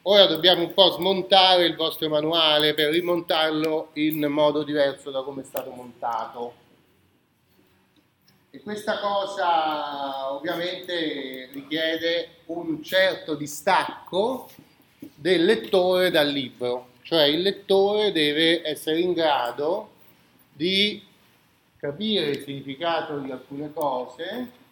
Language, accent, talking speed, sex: Italian, native, 105 wpm, male